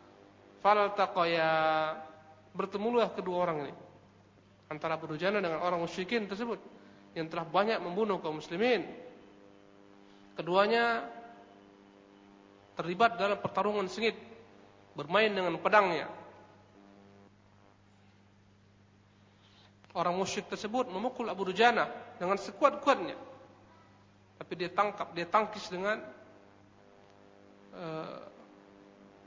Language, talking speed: Indonesian, 80 wpm